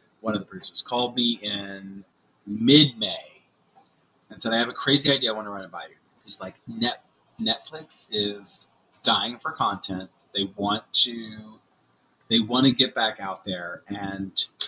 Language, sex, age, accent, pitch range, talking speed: English, male, 30-49, American, 100-125 Hz, 165 wpm